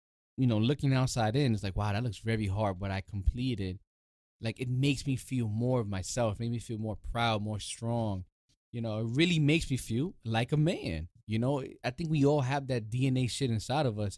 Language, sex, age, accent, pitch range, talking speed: English, male, 20-39, American, 95-125 Hz, 225 wpm